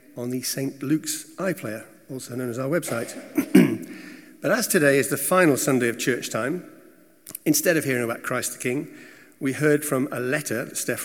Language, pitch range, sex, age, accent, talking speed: English, 130-165 Hz, male, 50-69, British, 185 wpm